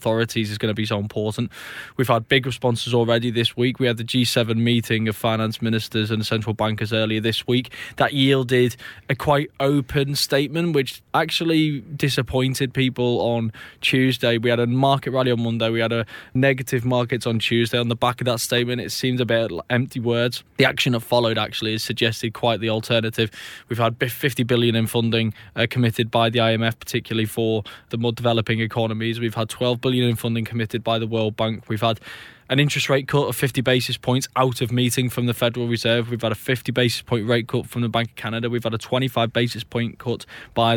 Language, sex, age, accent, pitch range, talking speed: English, male, 20-39, British, 115-125 Hz, 210 wpm